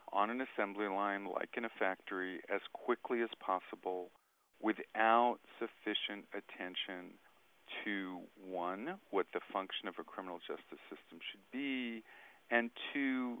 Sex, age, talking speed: male, 40-59, 130 wpm